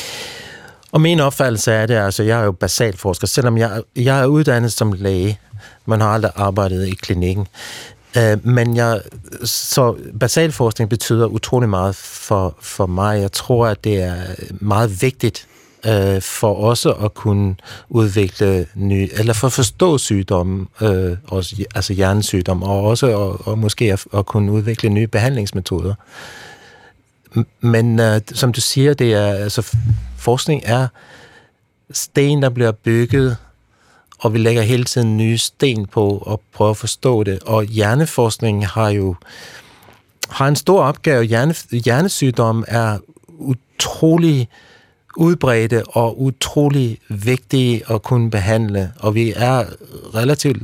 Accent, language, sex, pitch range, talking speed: native, Danish, male, 105-125 Hz, 125 wpm